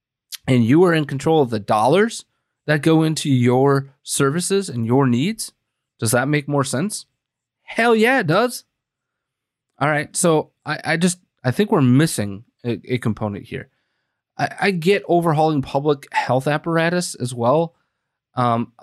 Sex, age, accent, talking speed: male, 20-39, American, 155 wpm